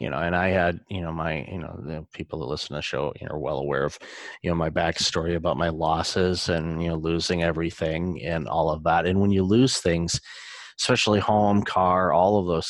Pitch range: 85-100 Hz